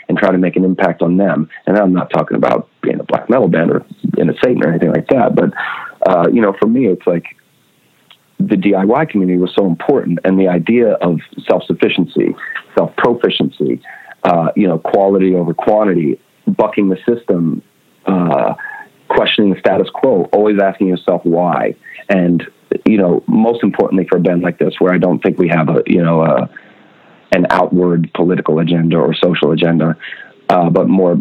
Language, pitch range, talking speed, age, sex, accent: English, 85-95 Hz, 180 wpm, 40-59, male, American